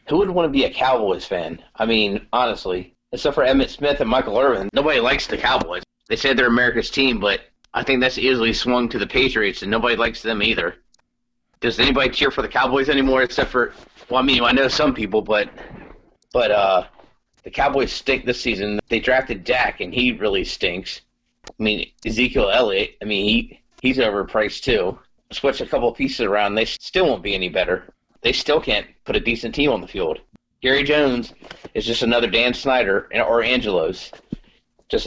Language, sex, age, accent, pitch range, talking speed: English, male, 30-49, American, 110-130 Hz, 195 wpm